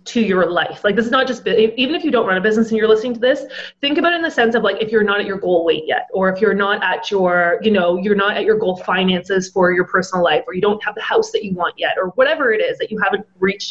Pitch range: 190-285 Hz